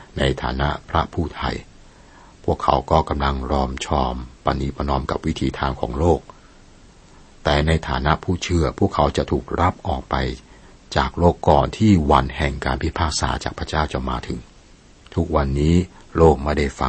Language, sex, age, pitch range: Thai, male, 60-79, 65-85 Hz